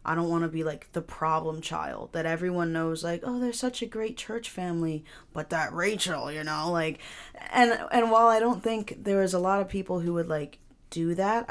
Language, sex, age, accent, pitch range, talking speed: English, female, 20-39, American, 155-180 Hz, 225 wpm